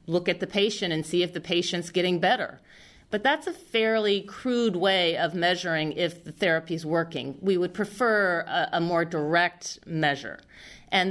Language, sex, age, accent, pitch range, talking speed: English, female, 40-59, American, 170-200 Hz, 175 wpm